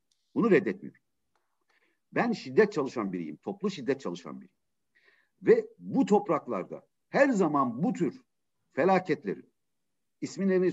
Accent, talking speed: native, 105 wpm